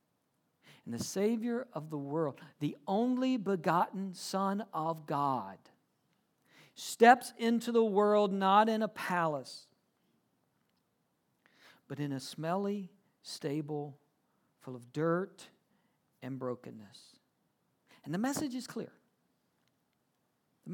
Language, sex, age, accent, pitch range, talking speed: English, male, 50-69, American, 160-235 Hz, 105 wpm